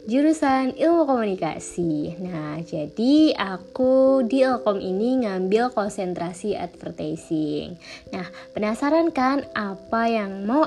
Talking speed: 100 wpm